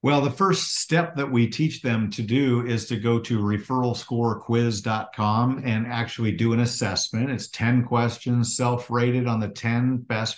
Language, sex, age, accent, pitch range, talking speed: English, male, 50-69, American, 105-130 Hz, 160 wpm